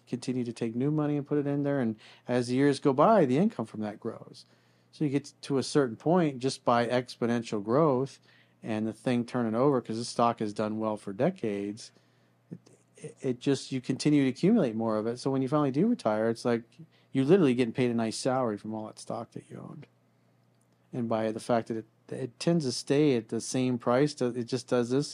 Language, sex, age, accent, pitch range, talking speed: English, male, 40-59, American, 110-135 Hz, 225 wpm